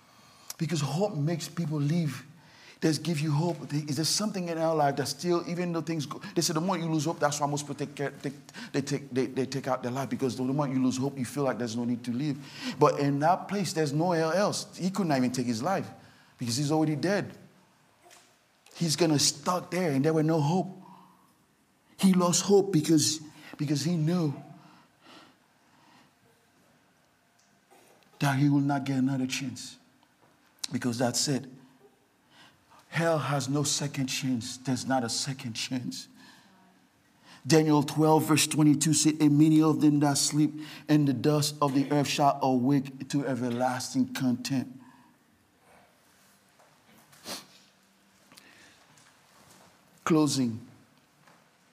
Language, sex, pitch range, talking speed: English, male, 130-160 Hz, 155 wpm